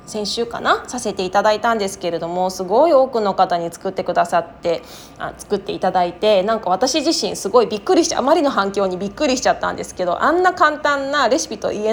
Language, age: Japanese, 20-39